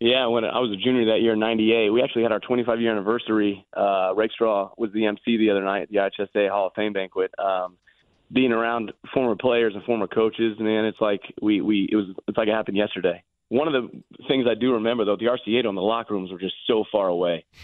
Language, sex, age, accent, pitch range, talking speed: English, male, 30-49, American, 95-110 Hz, 255 wpm